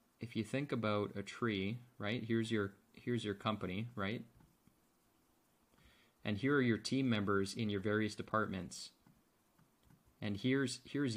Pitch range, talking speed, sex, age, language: 105-130 Hz, 140 wpm, male, 30-49, English